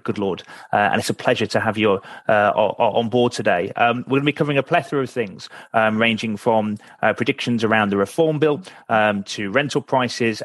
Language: English